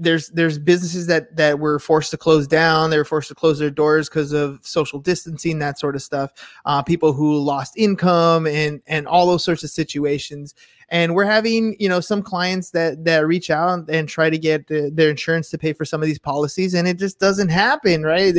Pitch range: 150-180 Hz